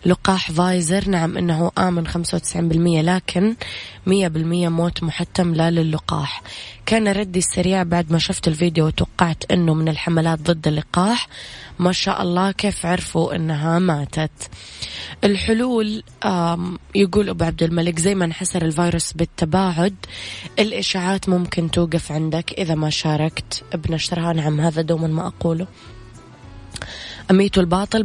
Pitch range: 160-185 Hz